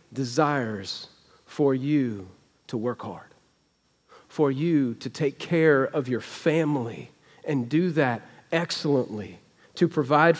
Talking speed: 115 wpm